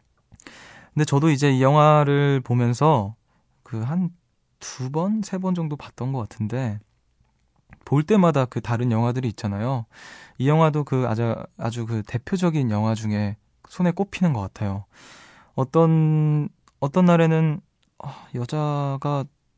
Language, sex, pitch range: Korean, male, 110-145 Hz